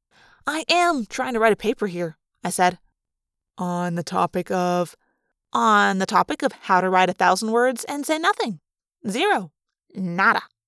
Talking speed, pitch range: 165 wpm, 175-235 Hz